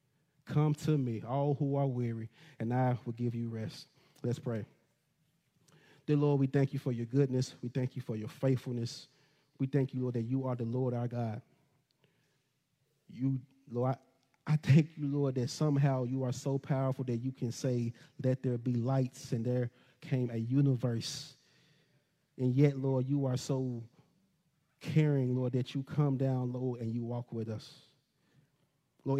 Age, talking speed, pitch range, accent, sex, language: 30-49, 175 wpm, 125-145 Hz, American, male, English